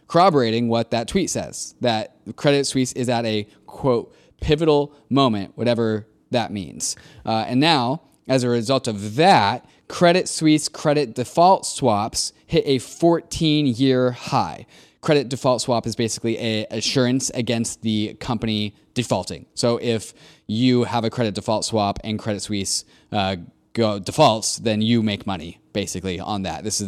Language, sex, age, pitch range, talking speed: English, male, 20-39, 110-135 Hz, 150 wpm